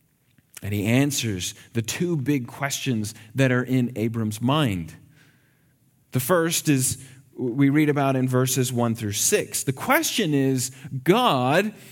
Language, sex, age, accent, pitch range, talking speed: English, male, 40-59, American, 130-185 Hz, 135 wpm